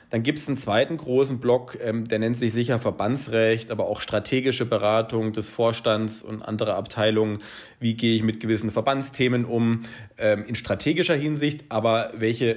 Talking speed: 165 wpm